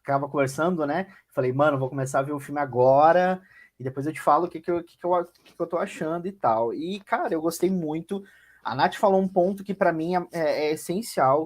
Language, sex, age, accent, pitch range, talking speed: Portuguese, male, 20-39, Brazilian, 150-200 Hz, 245 wpm